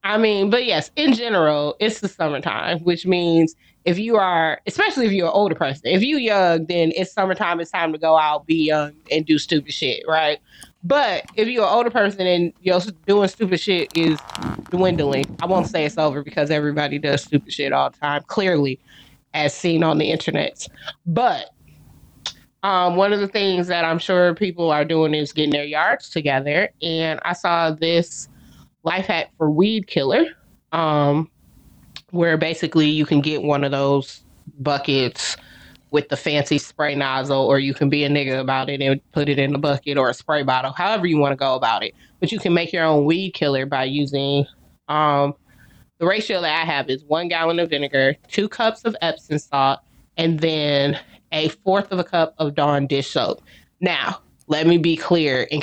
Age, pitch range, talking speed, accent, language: 20-39, 145-175 Hz, 195 wpm, American, English